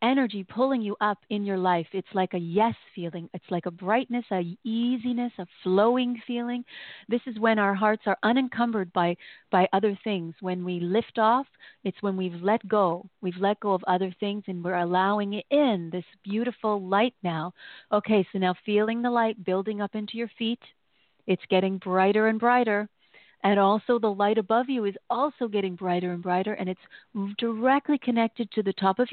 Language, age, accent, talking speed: English, 40-59, American, 190 wpm